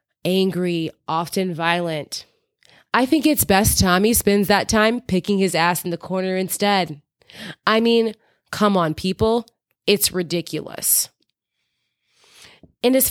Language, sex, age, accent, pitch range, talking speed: English, female, 20-39, American, 180-225 Hz, 125 wpm